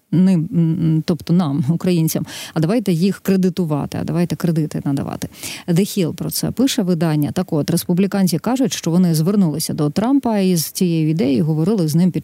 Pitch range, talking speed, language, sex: 160-195 Hz, 160 wpm, Ukrainian, female